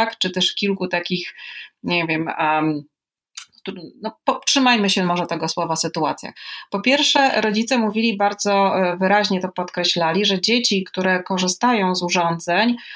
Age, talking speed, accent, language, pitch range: 30-49, 140 wpm, native, Polish, 185-230 Hz